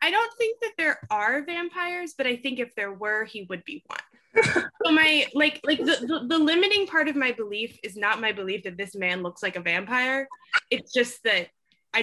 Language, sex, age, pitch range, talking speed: English, female, 20-39, 195-305 Hz, 220 wpm